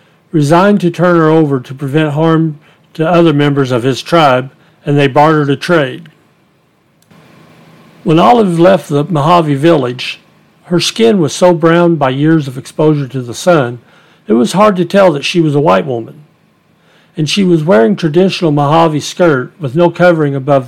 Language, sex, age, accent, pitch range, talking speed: English, male, 60-79, American, 140-175 Hz, 170 wpm